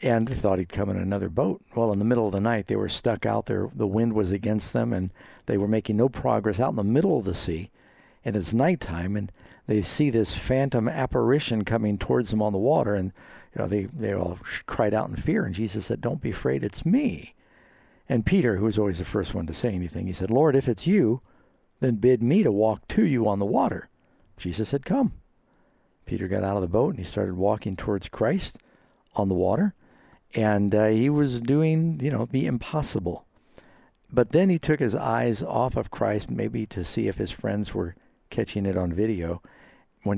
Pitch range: 95-120 Hz